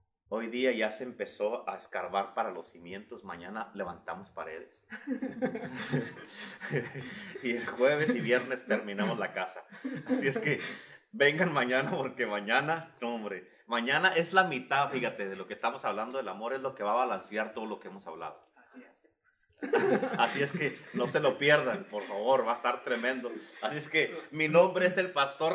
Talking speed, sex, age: 175 wpm, male, 30-49